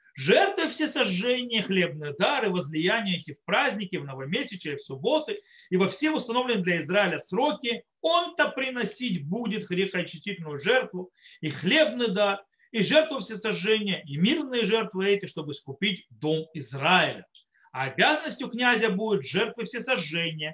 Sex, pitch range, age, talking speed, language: male, 160-225 Hz, 40-59, 135 wpm, Russian